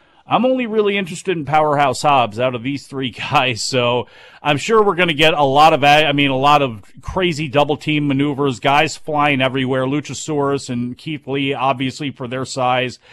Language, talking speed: English, 190 wpm